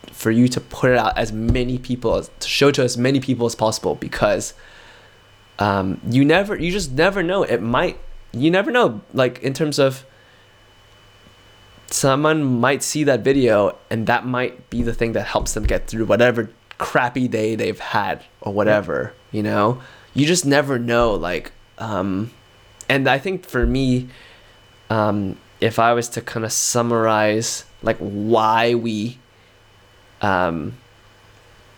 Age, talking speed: 20-39, 155 wpm